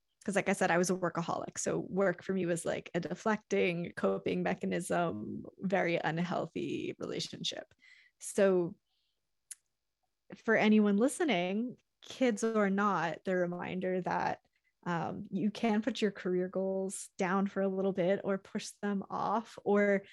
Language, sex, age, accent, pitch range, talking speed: English, female, 20-39, American, 180-210 Hz, 145 wpm